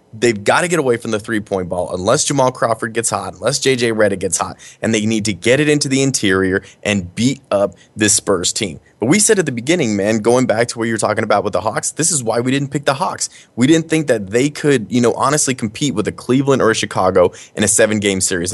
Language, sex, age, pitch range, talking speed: English, male, 20-39, 100-125 Hz, 260 wpm